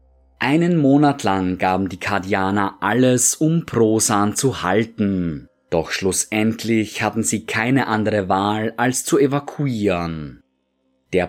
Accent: German